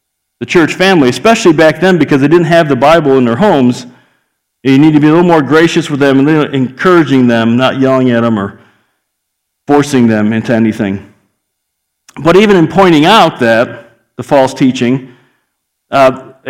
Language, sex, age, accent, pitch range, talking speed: English, male, 50-69, American, 135-170 Hz, 175 wpm